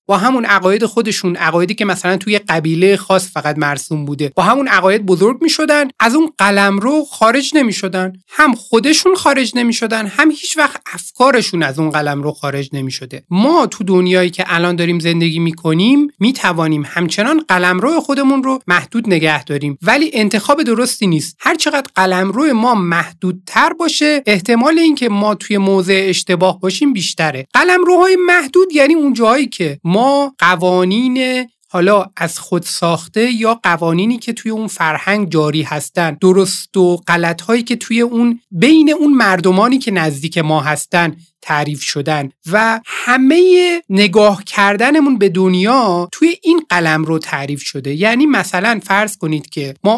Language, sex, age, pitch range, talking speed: Persian, male, 30-49, 175-245 Hz, 160 wpm